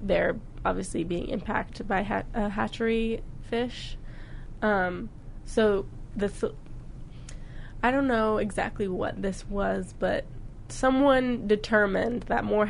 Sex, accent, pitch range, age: female, American, 190-225 Hz, 20-39